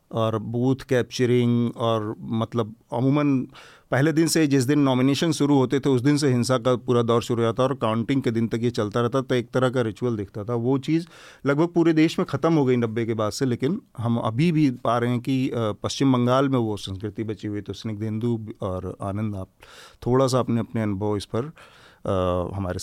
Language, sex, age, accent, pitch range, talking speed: Hindi, male, 40-59, native, 110-130 Hz, 220 wpm